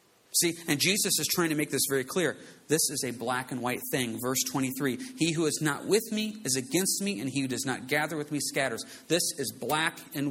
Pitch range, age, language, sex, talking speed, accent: 145-230 Hz, 40-59, English, male, 240 wpm, American